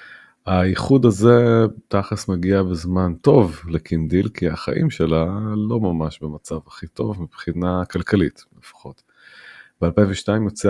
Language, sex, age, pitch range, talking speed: Hebrew, male, 30-49, 85-105 Hz, 110 wpm